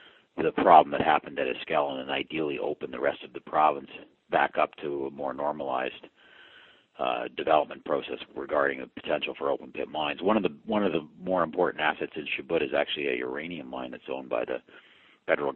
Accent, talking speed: American, 195 wpm